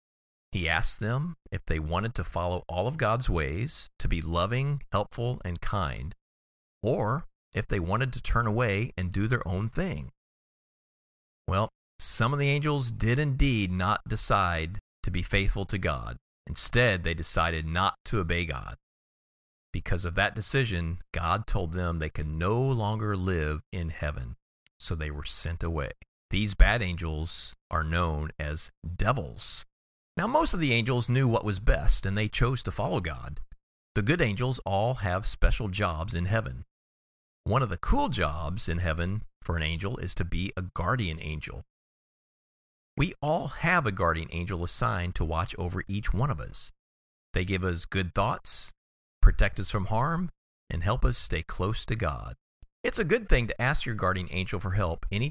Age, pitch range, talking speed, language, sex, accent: 40-59, 85-115 Hz, 170 wpm, English, male, American